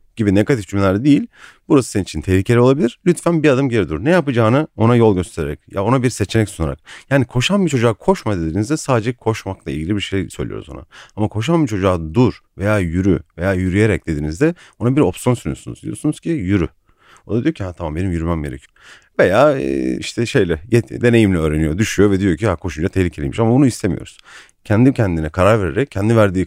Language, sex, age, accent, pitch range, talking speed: Turkish, male, 40-59, native, 90-125 Hz, 185 wpm